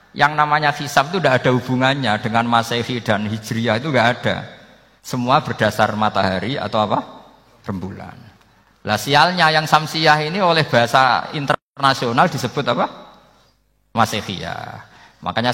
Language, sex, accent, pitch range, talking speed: Indonesian, male, native, 110-130 Hz, 125 wpm